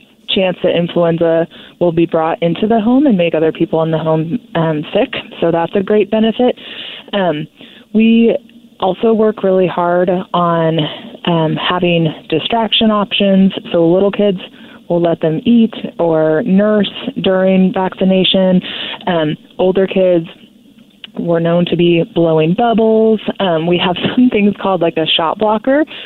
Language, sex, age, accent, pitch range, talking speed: English, female, 20-39, American, 170-225 Hz, 145 wpm